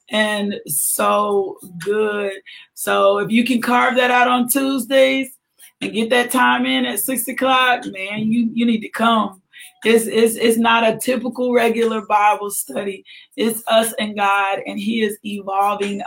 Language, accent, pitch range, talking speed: English, American, 205-245 Hz, 160 wpm